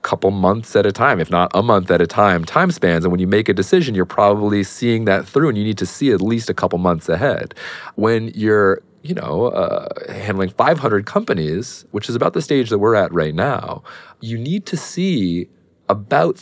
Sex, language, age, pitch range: male, English, 30-49, 95-140 Hz